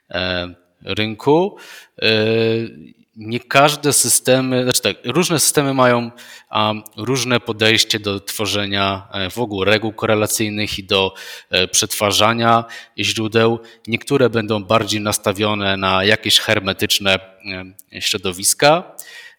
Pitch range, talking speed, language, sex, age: 100-115 Hz, 90 wpm, Polish, male, 20-39